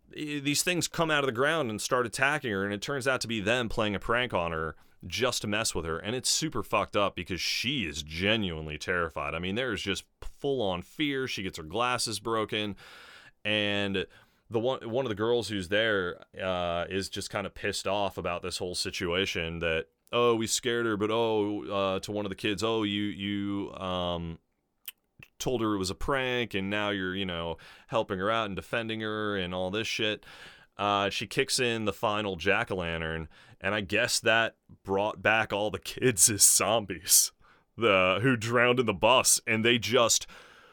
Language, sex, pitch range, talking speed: English, male, 95-125 Hz, 200 wpm